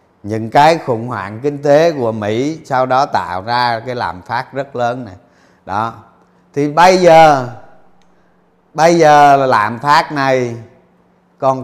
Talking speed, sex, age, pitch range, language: 150 wpm, male, 20-39, 120-155 Hz, Vietnamese